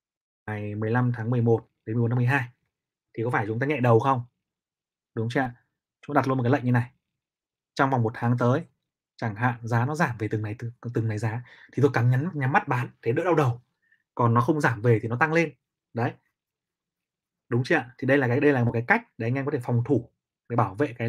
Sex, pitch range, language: male, 120-150 Hz, Vietnamese